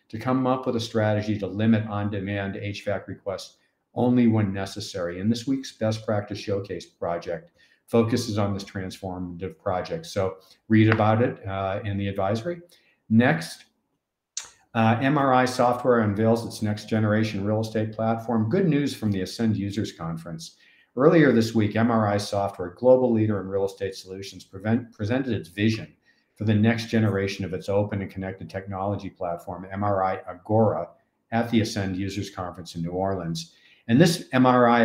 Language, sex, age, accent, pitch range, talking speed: English, male, 50-69, American, 95-115 Hz, 155 wpm